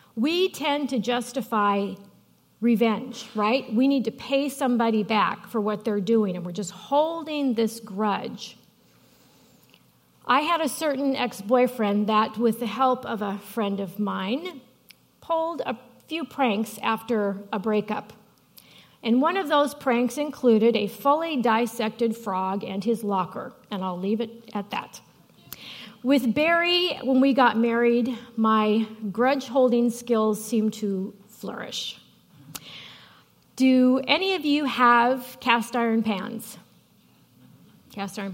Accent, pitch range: American, 215-260 Hz